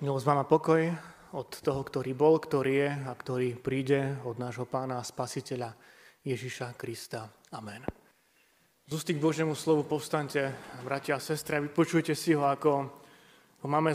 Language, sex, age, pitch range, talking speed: Slovak, male, 20-39, 145-180 Hz, 140 wpm